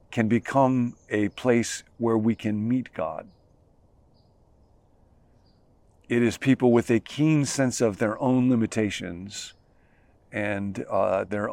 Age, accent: 50-69, American